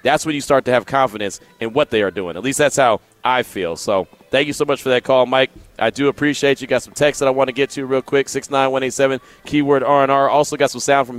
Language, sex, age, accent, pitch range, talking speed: English, male, 30-49, American, 120-155 Hz, 270 wpm